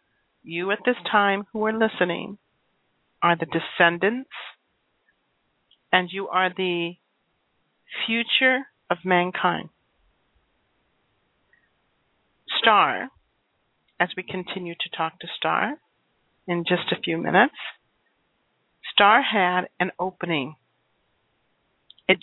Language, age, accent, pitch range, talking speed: English, 50-69, American, 175-210 Hz, 95 wpm